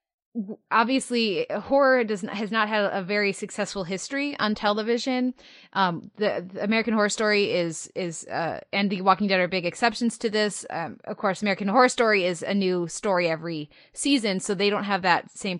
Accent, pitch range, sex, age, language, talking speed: American, 190-225 Hz, female, 20-39, English, 185 wpm